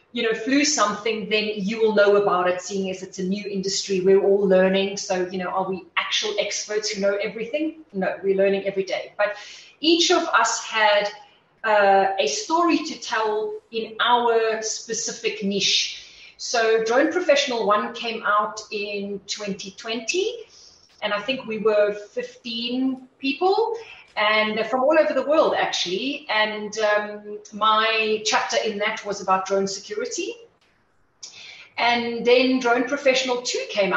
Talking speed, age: 155 wpm, 30-49